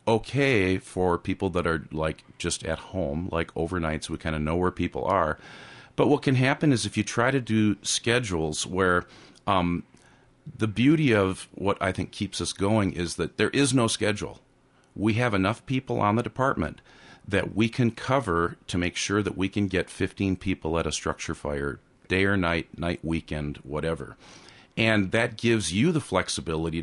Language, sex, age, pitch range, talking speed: English, male, 40-59, 90-120 Hz, 185 wpm